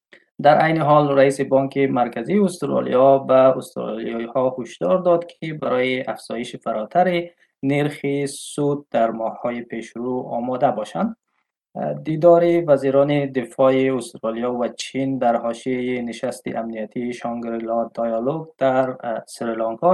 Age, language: 20-39, Persian